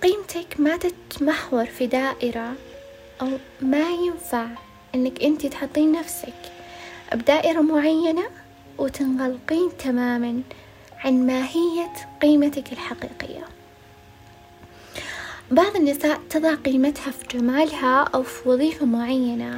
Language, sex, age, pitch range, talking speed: Arabic, female, 20-39, 250-310 Hz, 90 wpm